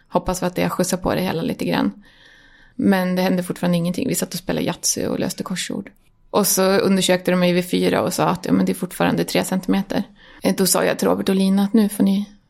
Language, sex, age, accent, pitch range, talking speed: English, female, 20-39, Swedish, 175-195 Hz, 245 wpm